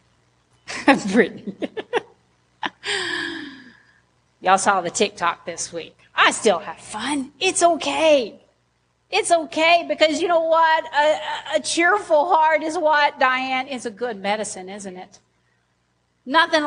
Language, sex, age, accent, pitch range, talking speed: English, female, 40-59, American, 205-320 Hz, 120 wpm